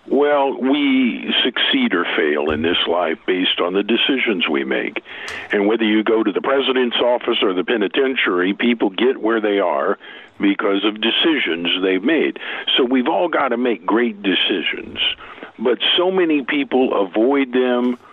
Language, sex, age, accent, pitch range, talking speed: English, male, 60-79, American, 110-145 Hz, 160 wpm